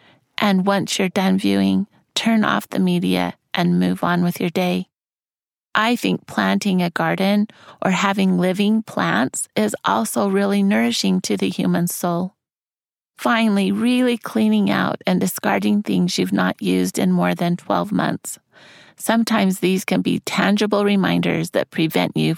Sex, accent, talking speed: female, American, 150 wpm